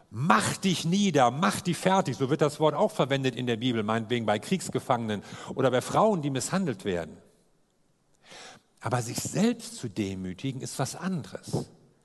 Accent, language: German, German